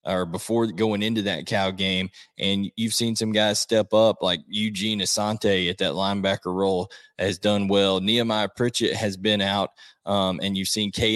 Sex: male